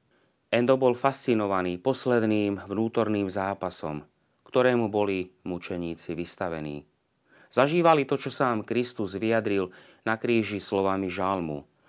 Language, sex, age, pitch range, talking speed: Slovak, male, 30-49, 95-120 Hz, 100 wpm